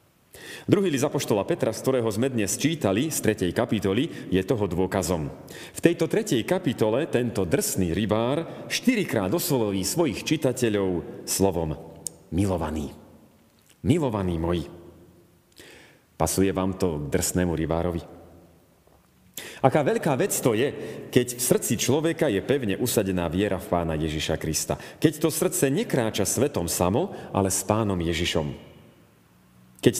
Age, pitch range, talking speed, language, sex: 40-59, 90-140 Hz, 125 wpm, Slovak, male